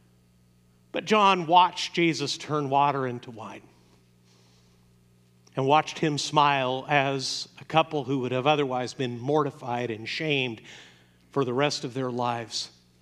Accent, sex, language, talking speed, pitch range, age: American, male, English, 135 wpm, 125-195 Hz, 50-69